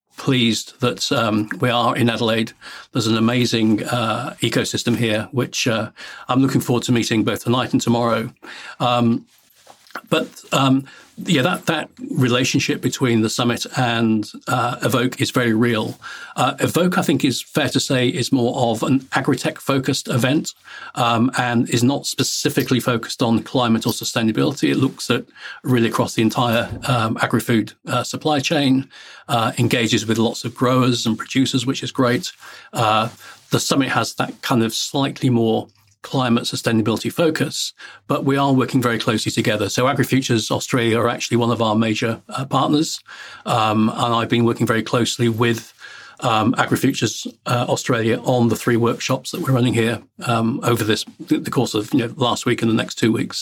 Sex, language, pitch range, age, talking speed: male, English, 115-130 Hz, 50-69, 170 wpm